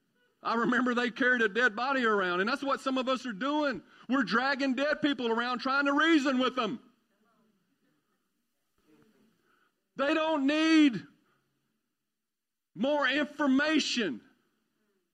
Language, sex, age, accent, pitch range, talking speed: English, male, 50-69, American, 185-260 Hz, 125 wpm